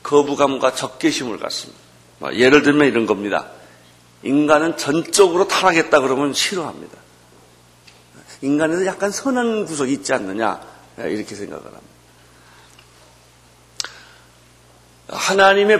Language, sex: Korean, male